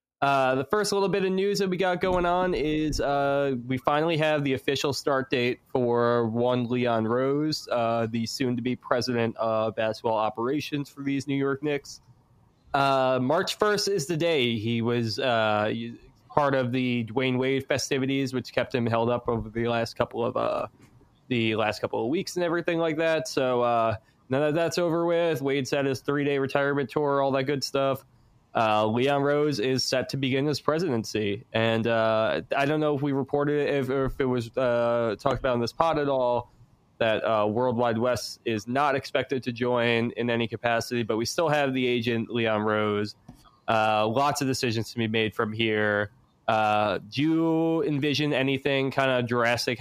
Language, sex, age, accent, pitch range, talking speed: English, male, 20-39, American, 115-140 Hz, 195 wpm